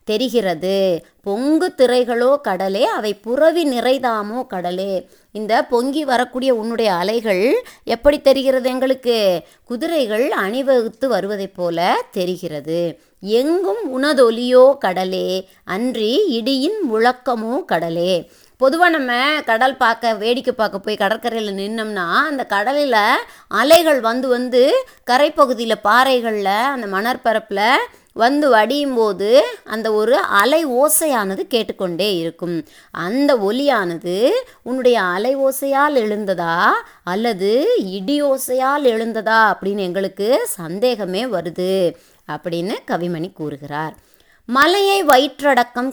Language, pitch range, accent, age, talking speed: Tamil, 195-270 Hz, native, 30-49, 95 wpm